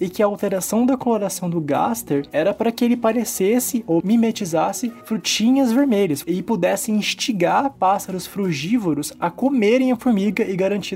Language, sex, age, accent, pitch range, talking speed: Portuguese, male, 20-39, Brazilian, 155-215 Hz, 155 wpm